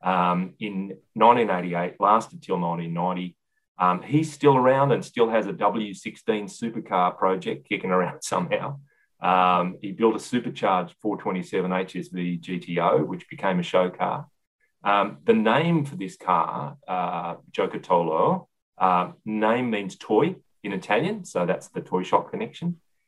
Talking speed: 140 wpm